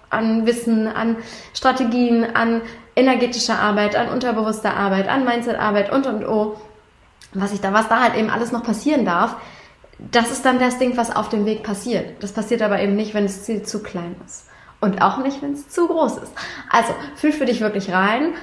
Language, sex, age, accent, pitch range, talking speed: German, female, 20-39, German, 215-250 Hz, 205 wpm